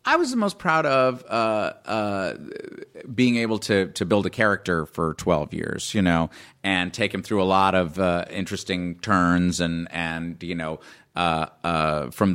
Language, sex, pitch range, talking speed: English, male, 85-100 Hz, 180 wpm